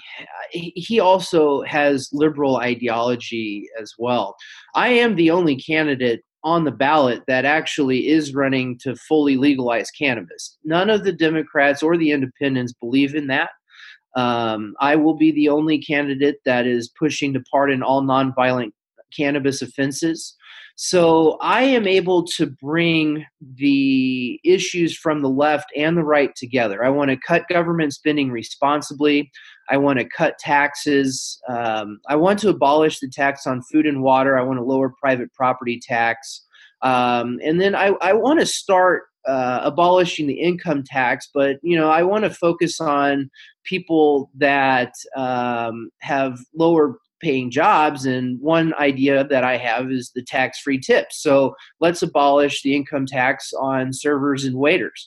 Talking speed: 155 wpm